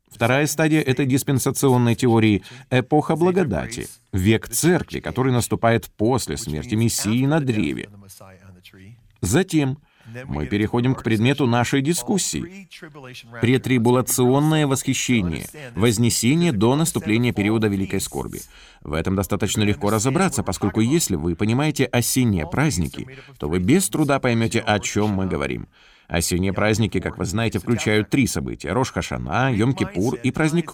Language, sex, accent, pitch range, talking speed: Russian, male, native, 100-135 Hz, 125 wpm